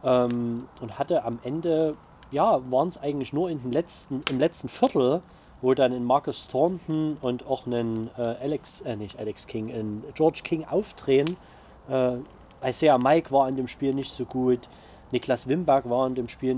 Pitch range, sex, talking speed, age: 120-145 Hz, male, 180 wpm, 30-49